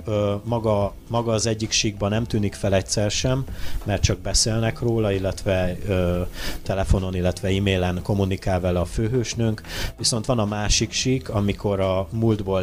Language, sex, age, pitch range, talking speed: Hungarian, male, 30-49, 90-105 Hz, 145 wpm